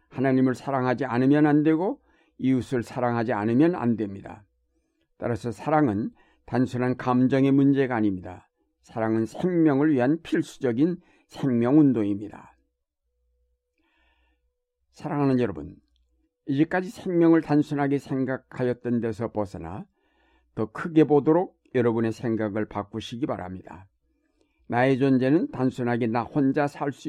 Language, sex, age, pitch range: Korean, male, 60-79, 115-150 Hz